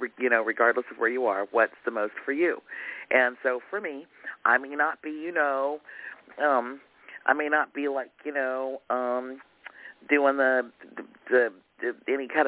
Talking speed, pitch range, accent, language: 185 wpm, 115-145 Hz, American, English